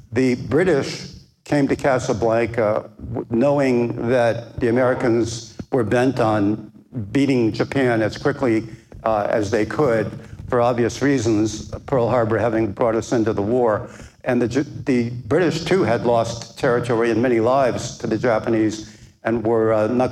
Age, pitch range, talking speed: 60-79, 110-130 Hz, 145 wpm